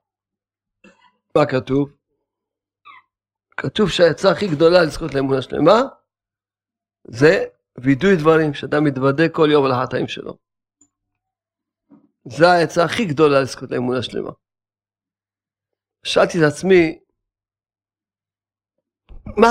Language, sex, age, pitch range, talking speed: Hebrew, male, 50-69, 100-155 Hz, 90 wpm